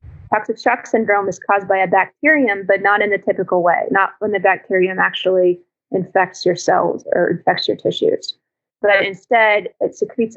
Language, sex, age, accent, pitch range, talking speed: English, female, 30-49, American, 185-220 Hz, 175 wpm